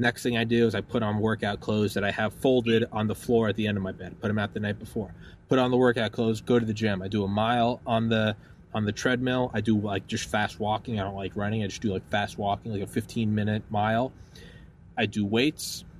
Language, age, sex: English, 20-39, male